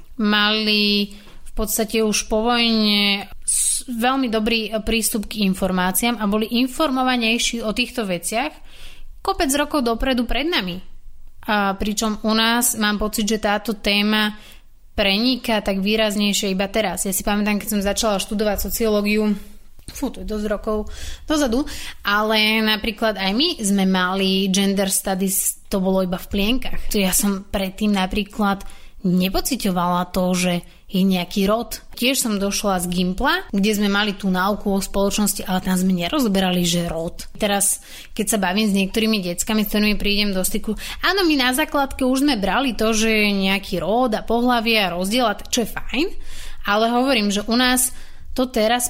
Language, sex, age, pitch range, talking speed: Slovak, female, 20-39, 195-230 Hz, 160 wpm